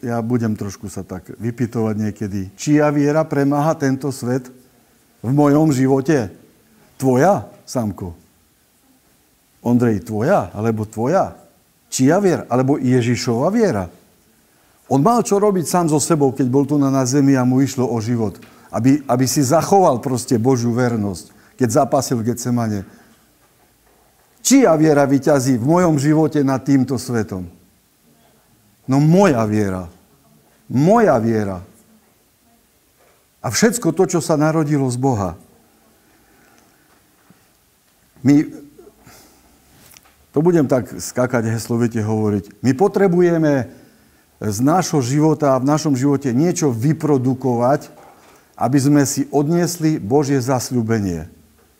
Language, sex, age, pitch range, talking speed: Slovak, male, 50-69, 115-155 Hz, 115 wpm